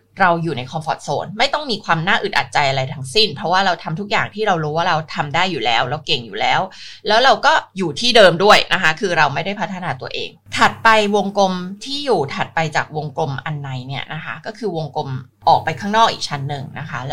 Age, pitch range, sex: 20-39, 160-225 Hz, female